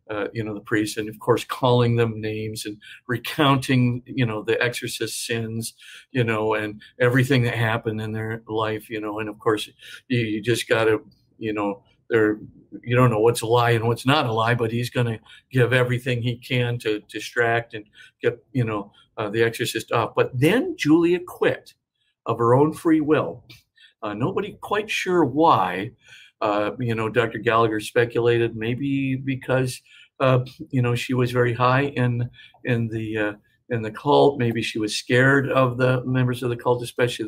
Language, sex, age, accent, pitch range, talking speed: English, male, 50-69, American, 110-130 Hz, 185 wpm